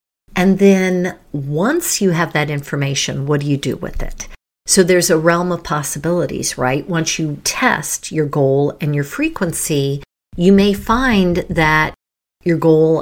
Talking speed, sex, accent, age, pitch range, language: 155 wpm, female, American, 50-69, 145-180 Hz, English